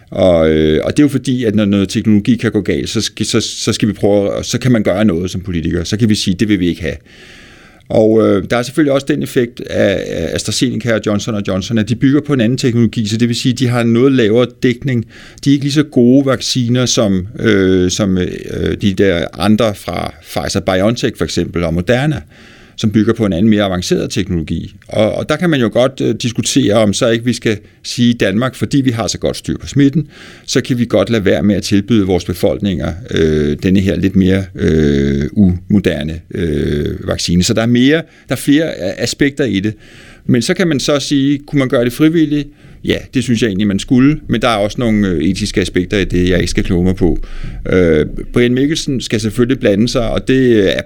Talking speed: 220 wpm